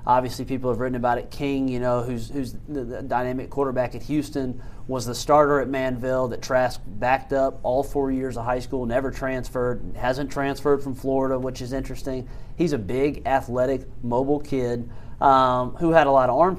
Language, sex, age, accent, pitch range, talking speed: English, male, 30-49, American, 115-135 Hz, 195 wpm